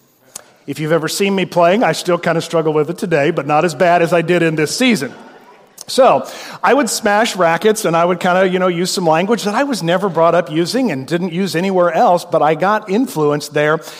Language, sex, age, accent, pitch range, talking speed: English, male, 40-59, American, 150-185 Hz, 240 wpm